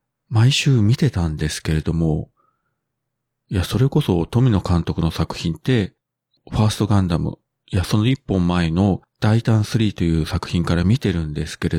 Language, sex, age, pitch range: Japanese, male, 40-59, 85-125 Hz